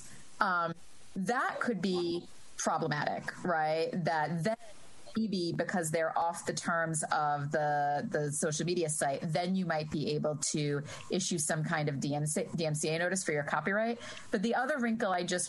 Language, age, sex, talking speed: English, 30-49, female, 160 wpm